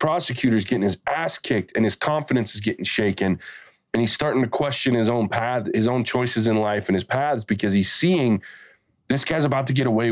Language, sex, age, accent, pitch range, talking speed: English, male, 20-39, American, 105-135 Hz, 220 wpm